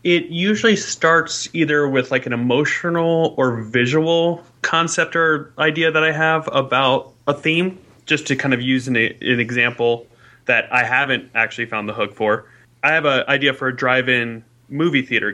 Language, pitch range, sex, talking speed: English, 125-155 Hz, male, 170 wpm